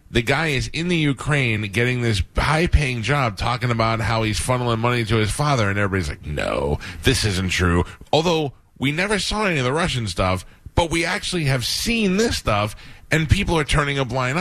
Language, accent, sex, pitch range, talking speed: English, American, male, 100-140 Hz, 200 wpm